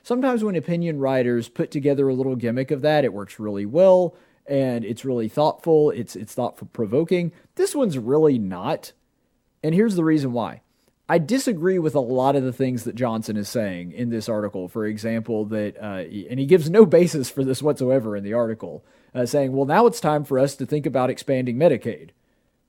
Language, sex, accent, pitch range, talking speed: English, male, American, 130-165 Hz, 200 wpm